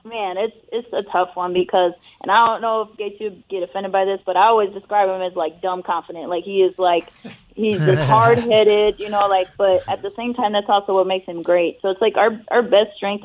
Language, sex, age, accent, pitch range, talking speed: English, female, 20-39, American, 175-215 Hz, 250 wpm